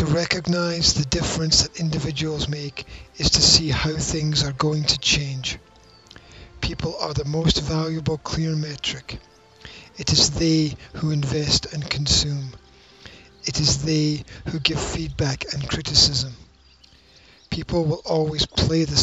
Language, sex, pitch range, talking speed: English, male, 115-155 Hz, 135 wpm